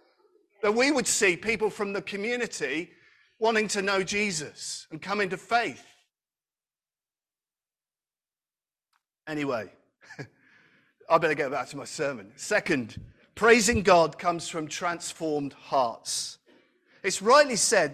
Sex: male